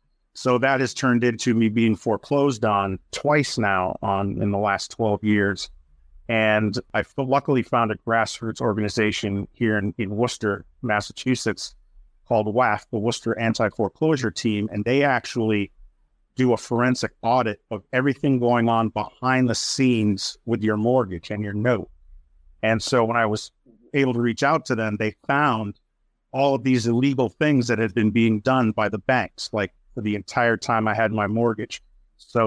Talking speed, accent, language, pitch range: 170 wpm, American, English, 105-125 Hz